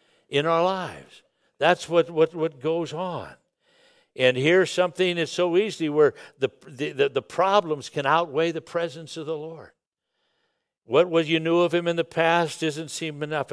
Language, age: English, 60-79